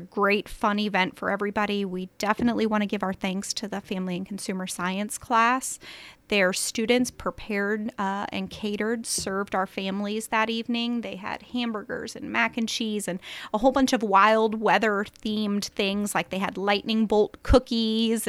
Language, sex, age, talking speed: English, female, 30-49, 175 wpm